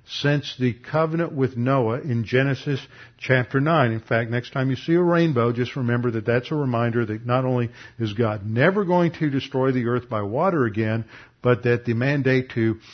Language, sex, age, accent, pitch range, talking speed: English, male, 50-69, American, 120-145 Hz, 195 wpm